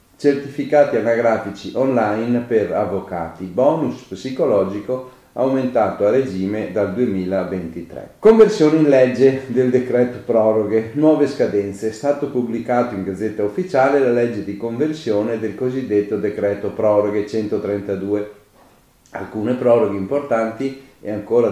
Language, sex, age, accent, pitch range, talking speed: Italian, male, 40-59, native, 100-125 Hz, 110 wpm